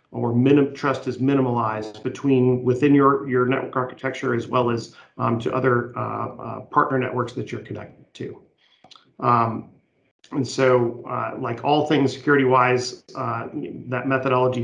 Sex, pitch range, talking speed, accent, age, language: male, 115-130 Hz, 135 wpm, American, 40-59, English